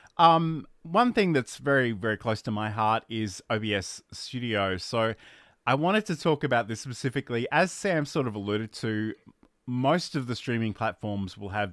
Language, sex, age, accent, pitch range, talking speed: English, male, 30-49, Australian, 95-135 Hz, 175 wpm